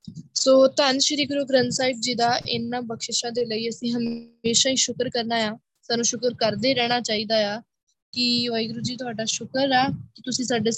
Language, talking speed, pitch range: Punjabi, 185 wpm, 225-250 Hz